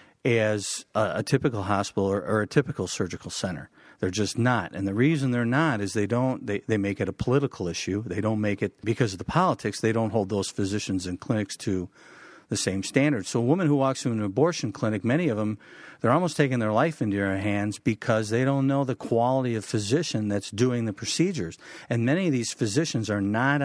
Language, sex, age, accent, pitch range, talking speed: English, male, 50-69, American, 100-130 Hz, 220 wpm